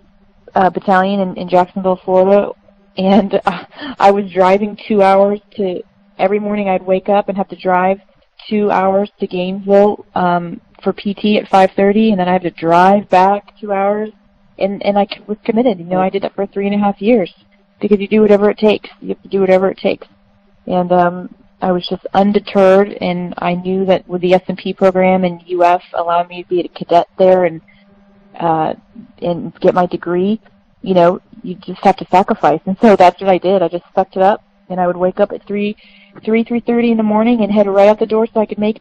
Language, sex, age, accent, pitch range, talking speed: English, female, 30-49, American, 180-205 Hz, 215 wpm